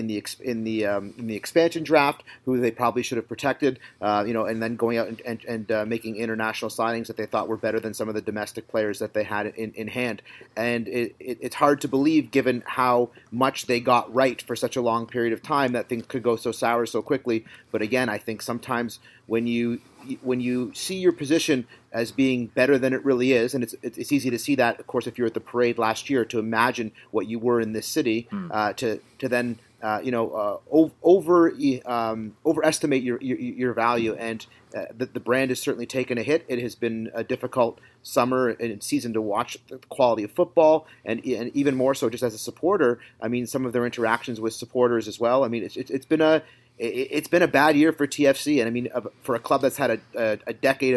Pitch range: 115-130 Hz